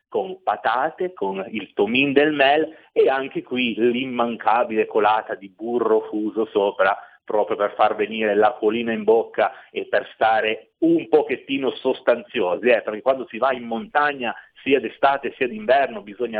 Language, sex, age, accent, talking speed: Italian, male, 30-49, native, 150 wpm